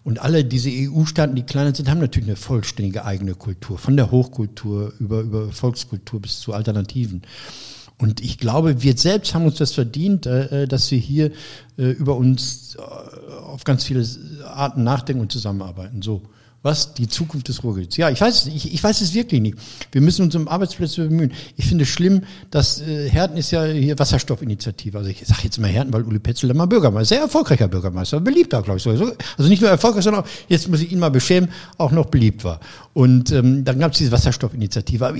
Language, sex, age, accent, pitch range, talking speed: German, male, 60-79, German, 120-170 Hz, 205 wpm